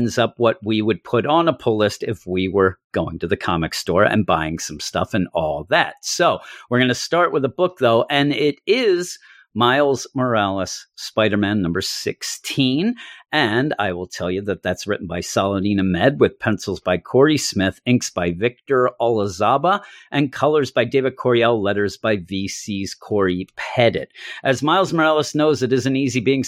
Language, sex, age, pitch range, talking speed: English, male, 50-69, 100-135 Hz, 180 wpm